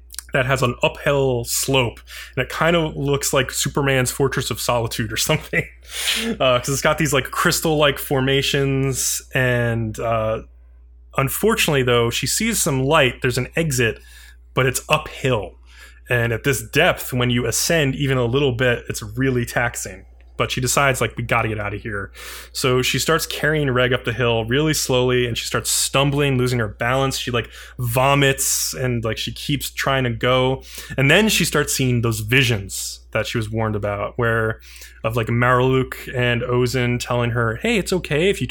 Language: English